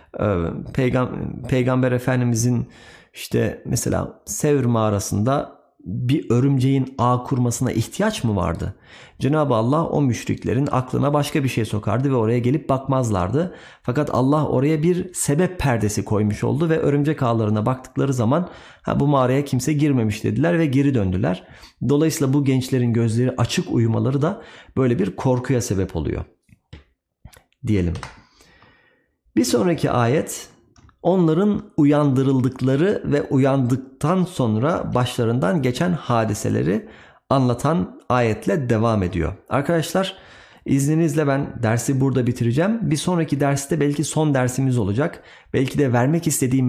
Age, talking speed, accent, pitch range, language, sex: 40-59, 120 wpm, native, 115-150 Hz, Turkish, male